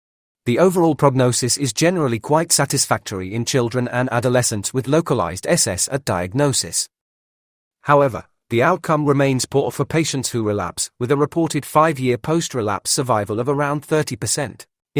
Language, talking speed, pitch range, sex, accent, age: English, 145 wpm, 120-145 Hz, male, British, 40-59